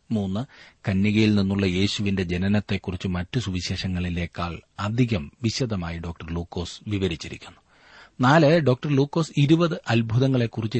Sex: male